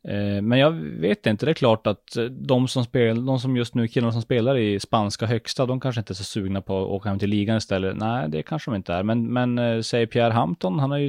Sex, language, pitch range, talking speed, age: male, Swedish, 100-125 Hz, 270 wpm, 20-39